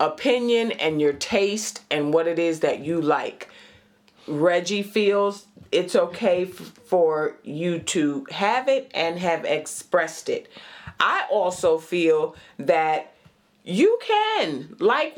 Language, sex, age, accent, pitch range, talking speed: English, female, 40-59, American, 165-245 Hz, 125 wpm